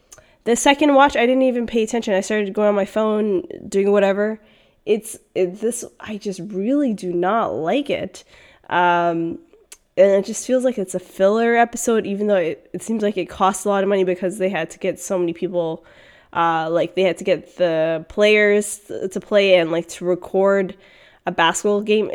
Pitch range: 175-210 Hz